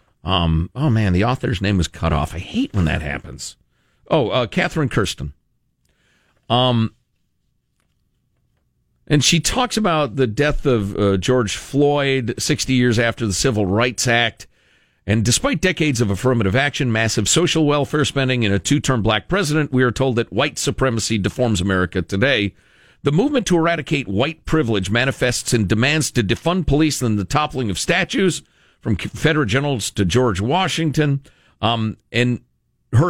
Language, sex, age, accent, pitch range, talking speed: English, male, 50-69, American, 105-150 Hz, 155 wpm